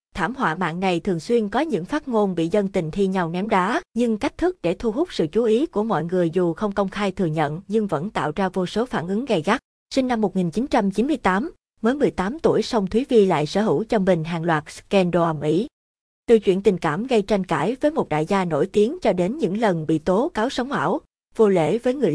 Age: 20-39